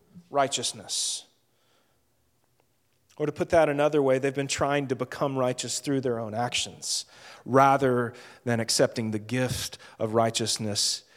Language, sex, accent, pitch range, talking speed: English, male, American, 125-155 Hz, 130 wpm